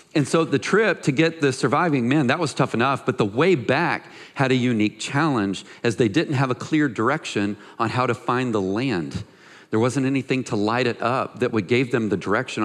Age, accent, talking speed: 40-59, American, 225 wpm